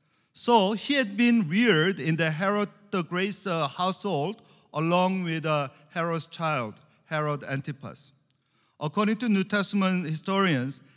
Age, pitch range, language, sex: 50-69, 150-215 Hz, English, male